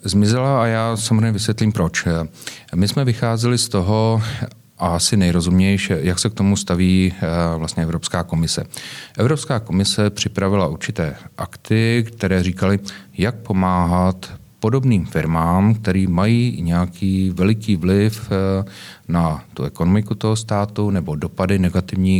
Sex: male